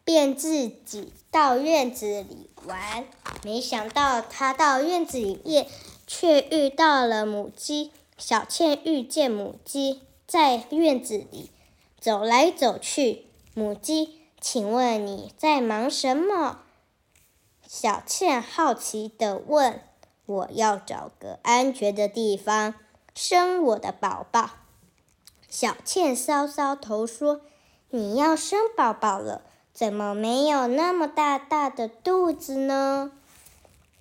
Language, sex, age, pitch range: Chinese, male, 10-29, 220-305 Hz